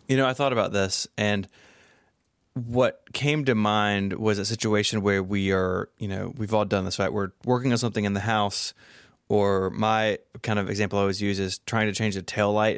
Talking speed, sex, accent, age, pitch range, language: 210 wpm, male, American, 20-39, 100-120 Hz, English